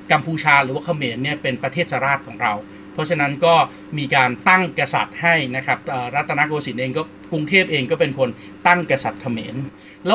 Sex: male